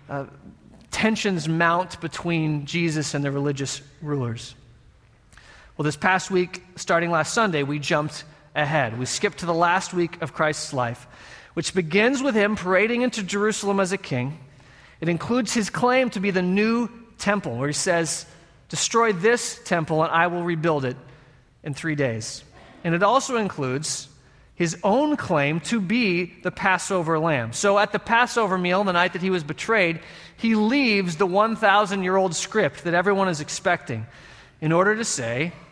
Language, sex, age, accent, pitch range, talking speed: English, male, 30-49, American, 145-205 Hz, 165 wpm